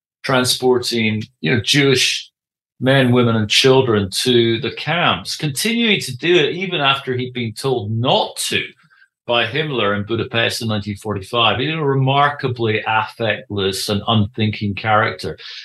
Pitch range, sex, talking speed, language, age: 120-155 Hz, male, 140 wpm, English, 40-59